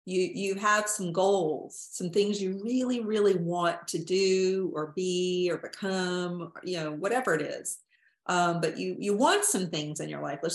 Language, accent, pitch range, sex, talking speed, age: English, American, 170-205 Hz, female, 190 wpm, 40-59